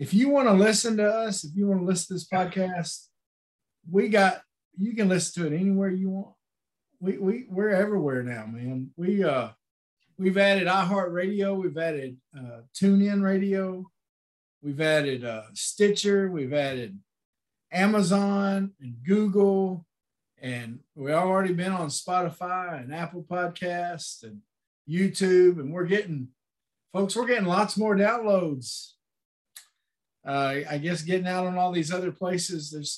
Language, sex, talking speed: English, male, 155 wpm